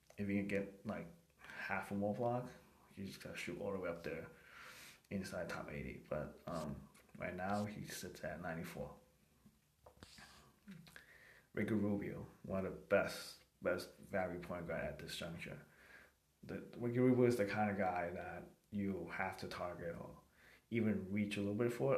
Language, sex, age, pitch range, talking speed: English, male, 20-39, 95-115 Hz, 165 wpm